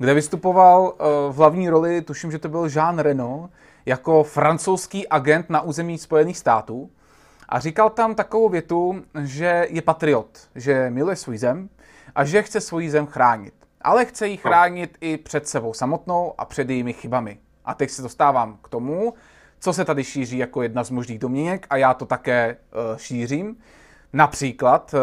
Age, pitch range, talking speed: 20-39, 125-165 Hz, 165 wpm